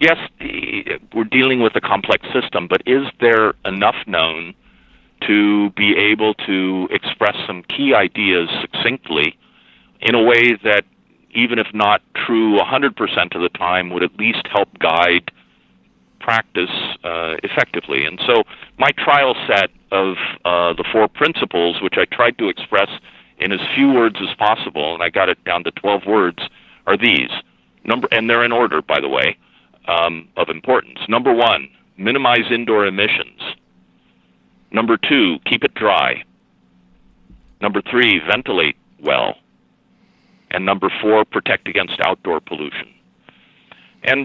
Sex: male